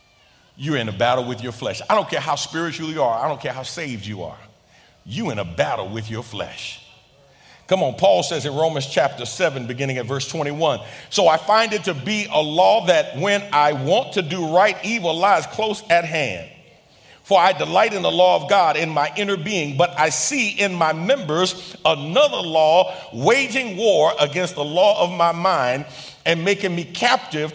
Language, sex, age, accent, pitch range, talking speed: English, male, 50-69, American, 145-195 Hz, 200 wpm